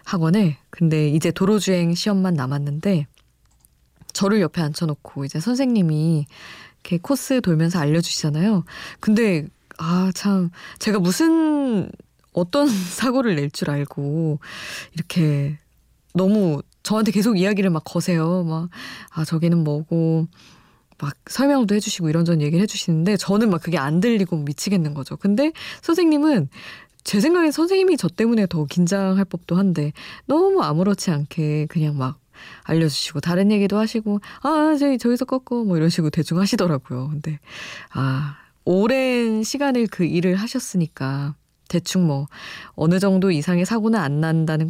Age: 20-39